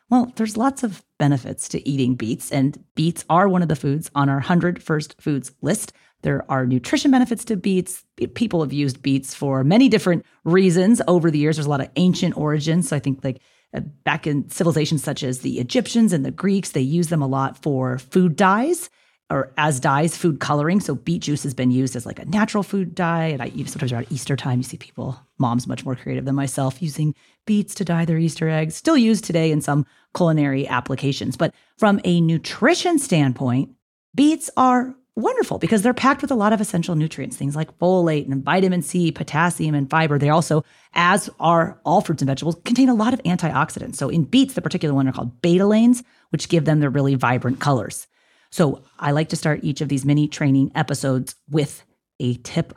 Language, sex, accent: English, female, American